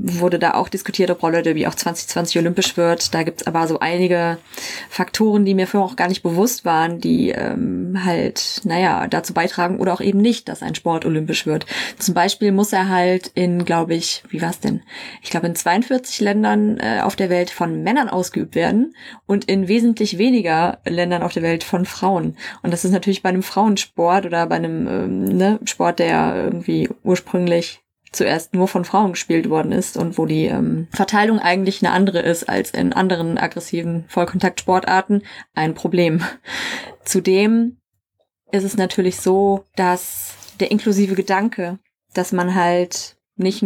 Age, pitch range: 20-39, 170-200 Hz